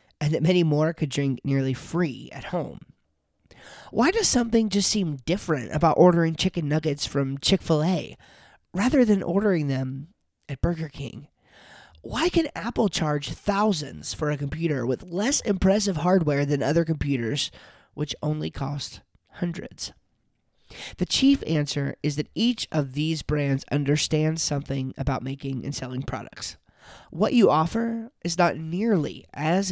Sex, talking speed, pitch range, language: male, 145 wpm, 140-195 Hz, English